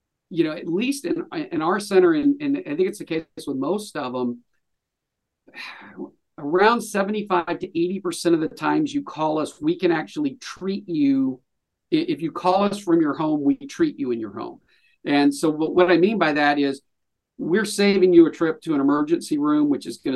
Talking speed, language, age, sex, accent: 200 wpm, English, 50-69, male, American